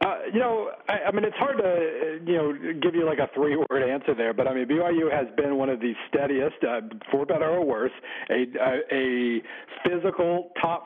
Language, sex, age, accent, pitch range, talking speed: English, male, 40-59, American, 125-155 Hz, 210 wpm